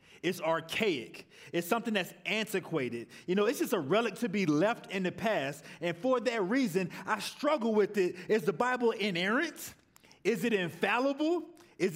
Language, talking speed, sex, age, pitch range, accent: English, 170 wpm, male, 30-49, 175-230 Hz, American